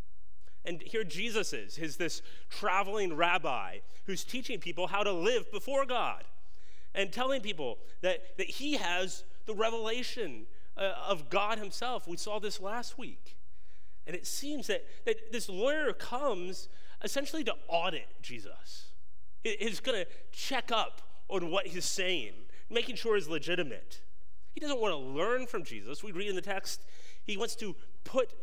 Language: English